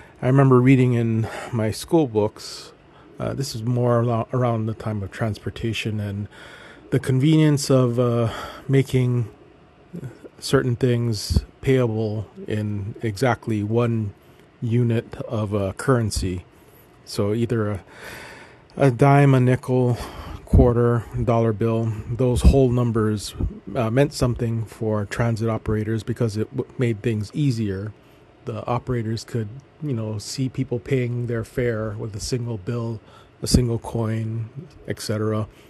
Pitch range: 110-125 Hz